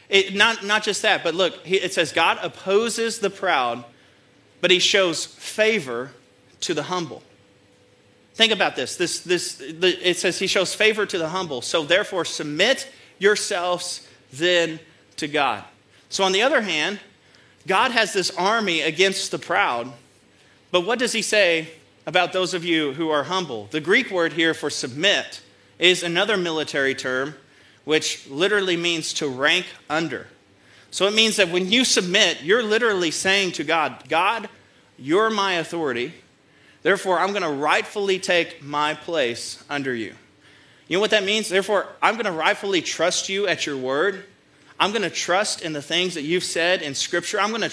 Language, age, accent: English, 30-49, American